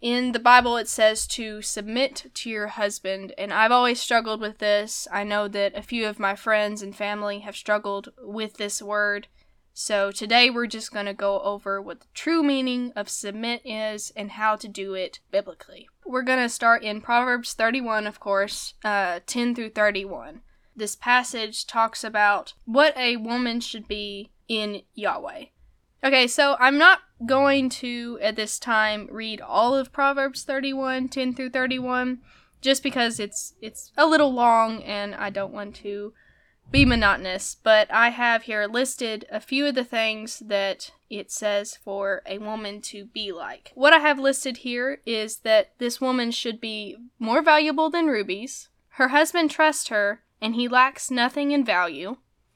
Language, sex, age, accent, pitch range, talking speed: English, female, 10-29, American, 210-255 Hz, 170 wpm